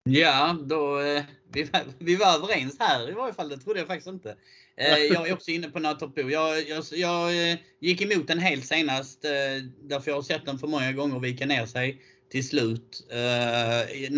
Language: Swedish